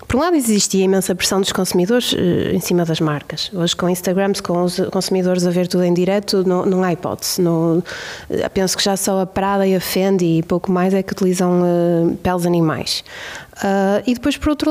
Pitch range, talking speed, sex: 185-225 Hz, 210 wpm, female